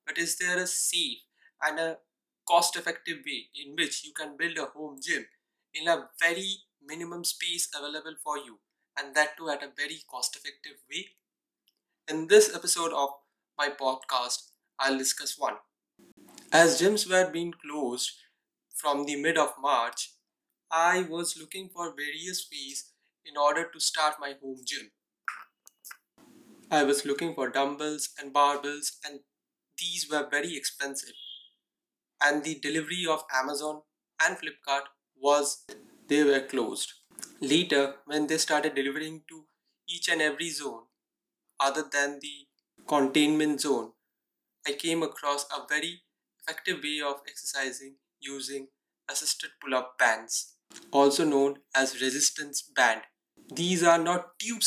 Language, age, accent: English, 20-39, Indian